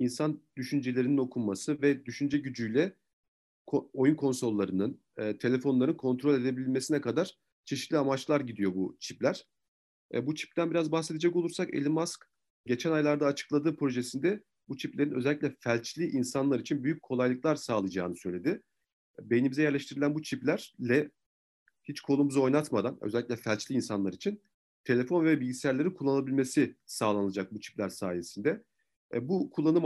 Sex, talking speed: male, 120 wpm